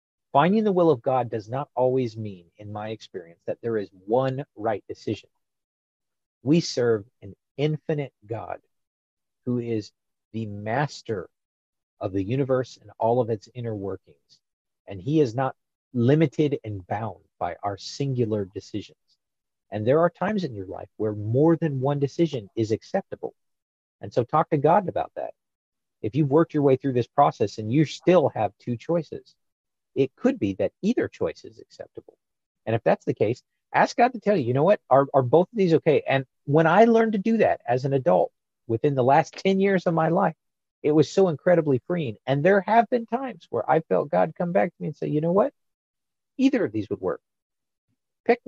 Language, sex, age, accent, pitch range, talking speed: English, male, 40-59, American, 120-180 Hz, 195 wpm